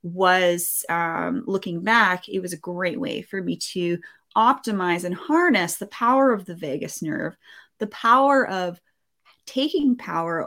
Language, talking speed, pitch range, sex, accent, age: English, 150 wpm, 175-220 Hz, female, American, 20-39